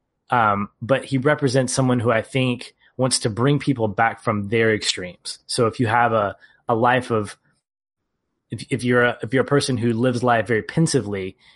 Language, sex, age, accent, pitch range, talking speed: English, male, 20-39, American, 110-135 Hz, 190 wpm